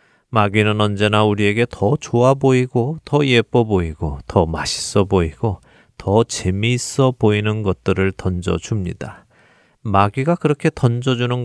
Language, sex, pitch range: Korean, male, 100-130 Hz